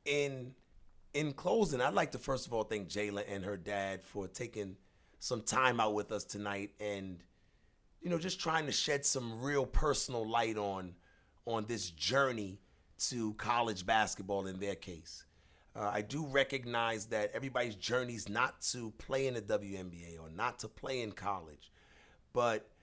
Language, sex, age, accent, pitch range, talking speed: English, male, 40-59, American, 100-125 Hz, 170 wpm